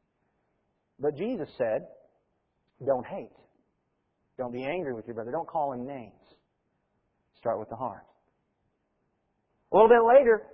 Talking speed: 130 wpm